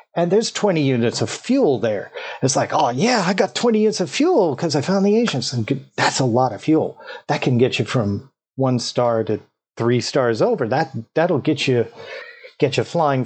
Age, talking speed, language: 40-59, 210 wpm, English